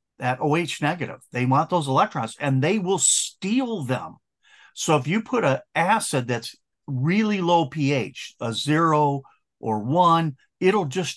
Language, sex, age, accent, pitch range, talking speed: English, male, 50-69, American, 130-175 Hz, 150 wpm